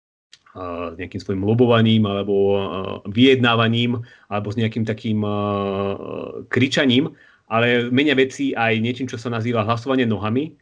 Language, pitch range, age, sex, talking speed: Slovak, 105-130 Hz, 30-49, male, 120 wpm